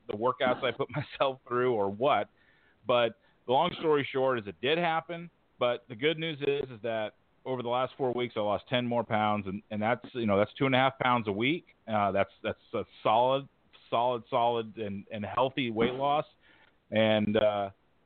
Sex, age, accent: male, 40-59, American